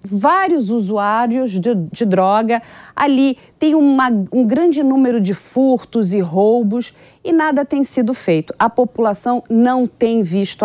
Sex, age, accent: female, 40-59, Brazilian